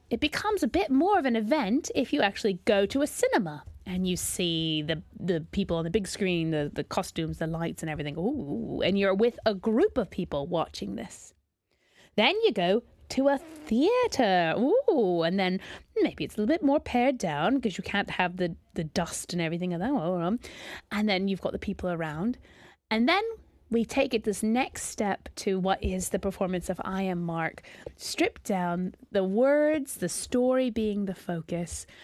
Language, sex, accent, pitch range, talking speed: English, female, British, 190-260 Hz, 195 wpm